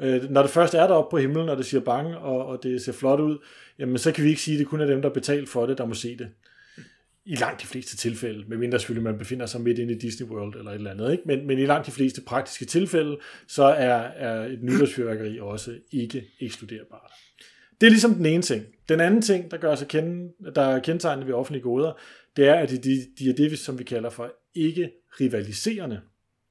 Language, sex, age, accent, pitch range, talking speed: English, male, 30-49, Danish, 120-160 Hz, 230 wpm